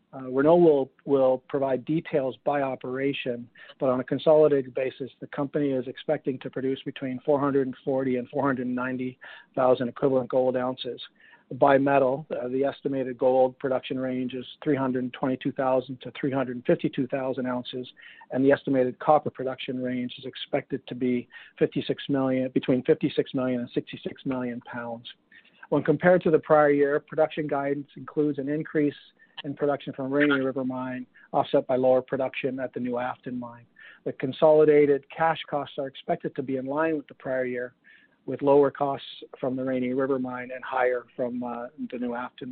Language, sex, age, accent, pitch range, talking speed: English, male, 50-69, American, 125-145 Hz, 160 wpm